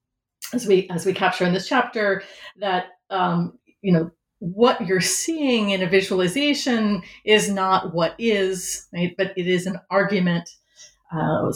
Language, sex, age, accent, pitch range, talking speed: English, female, 30-49, American, 175-220 Hz, 150 wpm